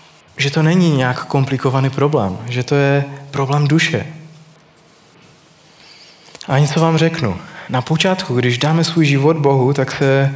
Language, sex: Czech, male